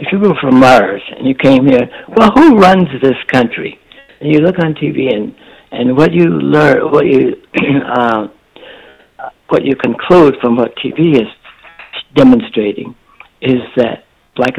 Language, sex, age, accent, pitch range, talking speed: English, male, 60-79, American, 120-175 Hz, 155 wpm